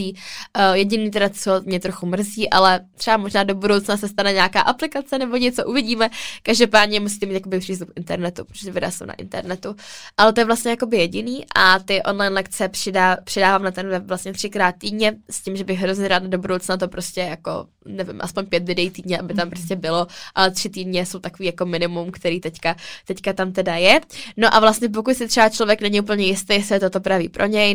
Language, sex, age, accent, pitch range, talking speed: Czech, female, 10-29, native, 185-210 Hz, 210 wpm